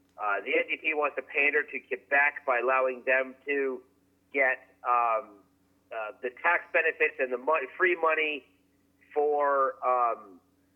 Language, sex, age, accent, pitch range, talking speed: English, male, 40-59, American, 125-160 Hz, 140 wpm